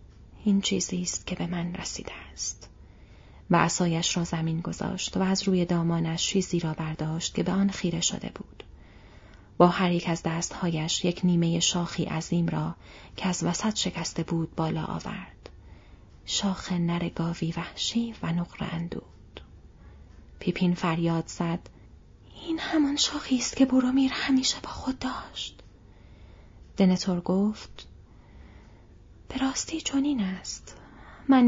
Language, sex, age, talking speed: Persian, female, 30-49, 130 wpm